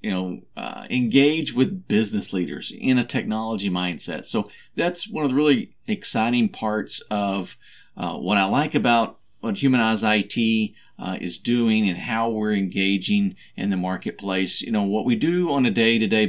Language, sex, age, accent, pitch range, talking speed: English, male, 40-59, American, 105-140 Hz, 170 wpm